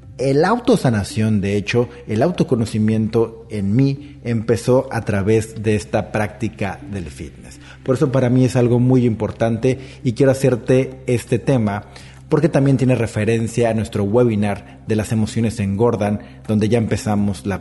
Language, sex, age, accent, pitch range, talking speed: Spanish, male, 40-59, Mexican, 110-135 Hz, 155 wpm